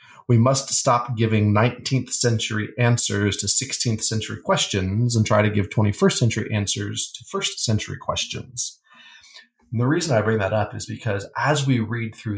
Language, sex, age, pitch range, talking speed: English, male, 30-49, 105-125 Hz, 170 wpm